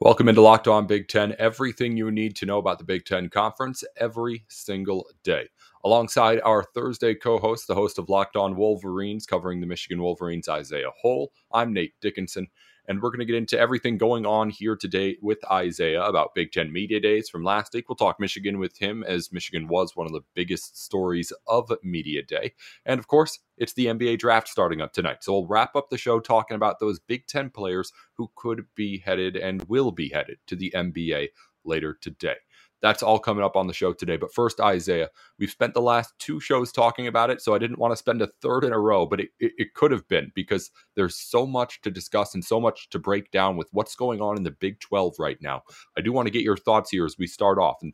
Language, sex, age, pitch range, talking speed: English, male, 30-49, 95-115 Hz, 230 wpm